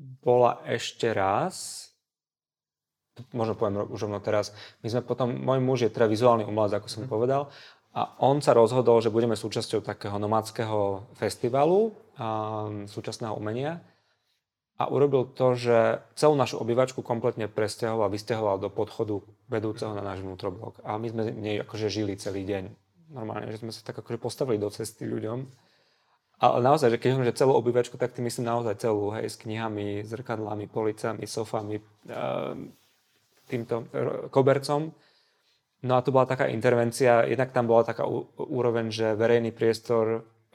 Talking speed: 150 wpm